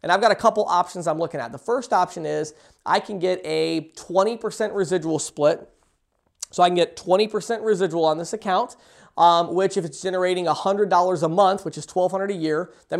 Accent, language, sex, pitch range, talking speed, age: American, English, male, 170-215 Hz, 200 wpm, 20-39